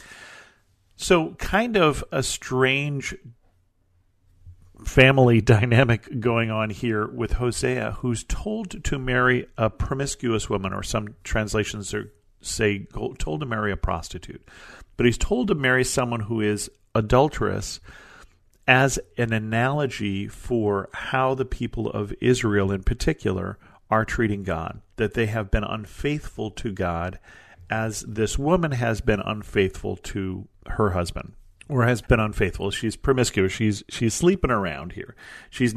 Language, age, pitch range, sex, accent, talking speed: English, 50-69, 100-125 Hz, male, American, 135 wpm